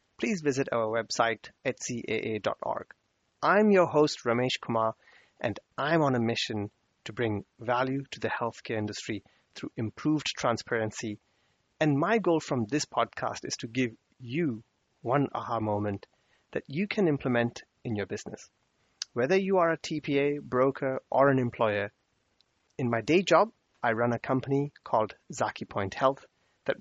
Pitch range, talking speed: 115-150 Hz, 150 wpm